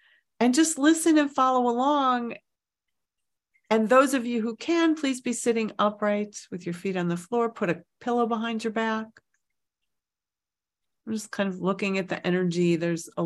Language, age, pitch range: English, 40-59, 170-235 Hz